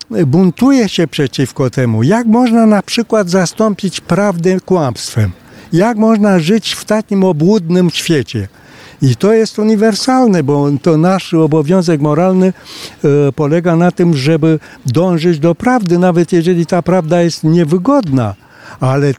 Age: 60-79